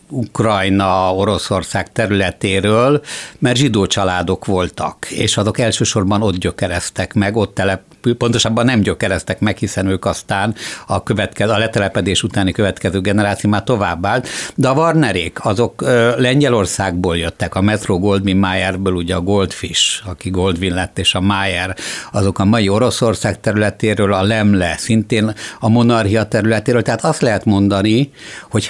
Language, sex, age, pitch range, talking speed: Hungarian, male, 60-79, 95-110 Hz, 140 wpm